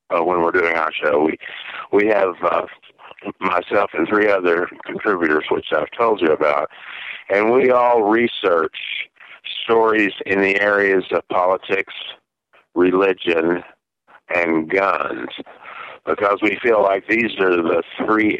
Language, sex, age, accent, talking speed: English, male, 50-69, American, 135 wpm